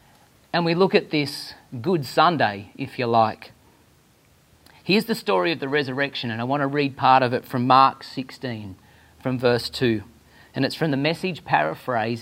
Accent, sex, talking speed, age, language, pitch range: Australian, male, 175 wpm, 40-59, English, 130-190 Hz